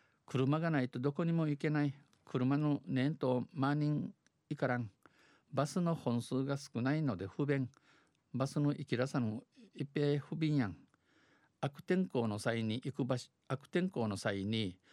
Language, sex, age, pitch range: Japanese, male, 50-69, 115-150 Hz